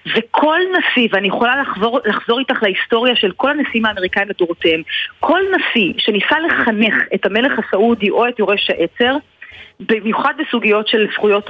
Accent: native